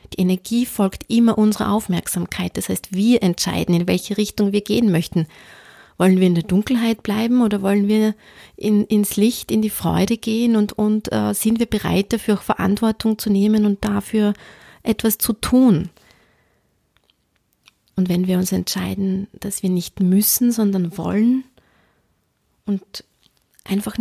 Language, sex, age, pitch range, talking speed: German, female, 30-49, 180-215 Hz, 145 wpm